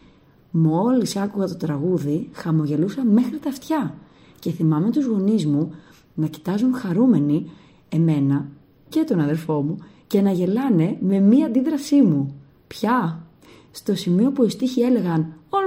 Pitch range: 155-230 Hz